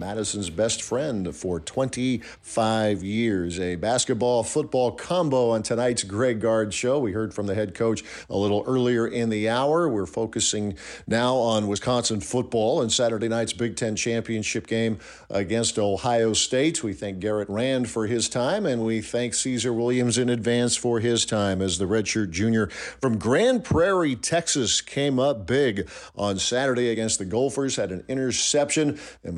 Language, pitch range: English, 105-125 Hz